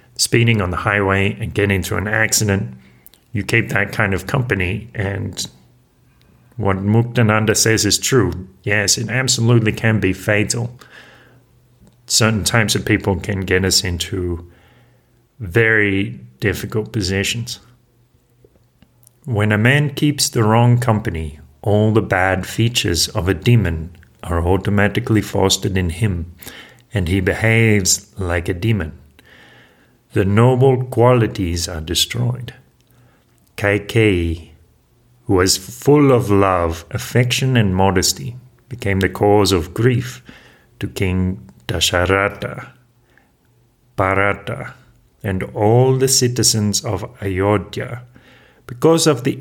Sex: male